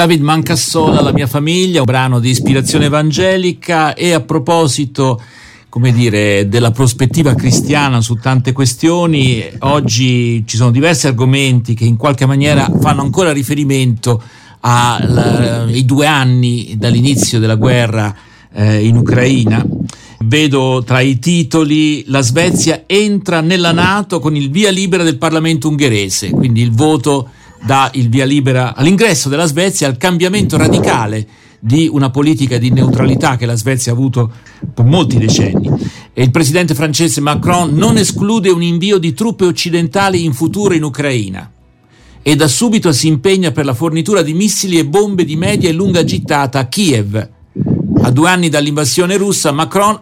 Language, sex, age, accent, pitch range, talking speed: Italian, male, 50-69, native, 125-165 Hz, 150 wpm